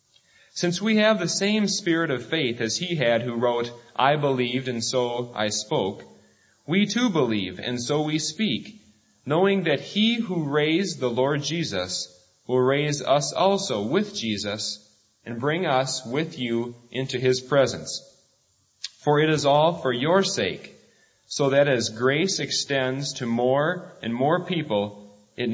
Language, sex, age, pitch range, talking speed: English, male, 30-49, 115-165 Hz, 155 wpm